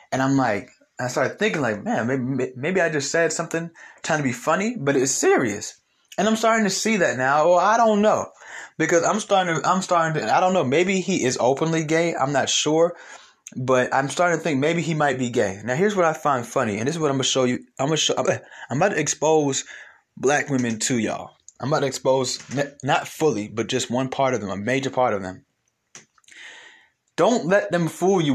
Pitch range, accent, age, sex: 130-170 Hz, American, 20-39, male